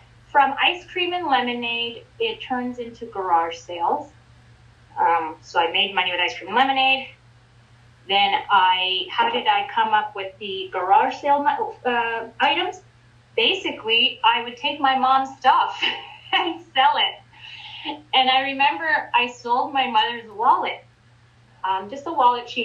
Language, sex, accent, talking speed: English, female, American, 150 wpm